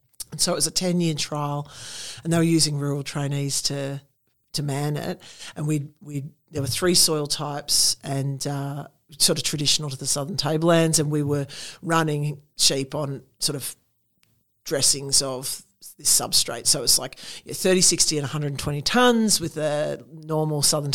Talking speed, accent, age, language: 170 wpm, Australian, 50-69, English